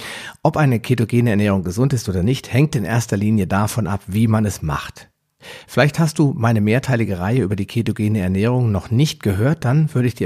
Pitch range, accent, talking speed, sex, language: 95-130 Hz, German, 205 wpm, male, German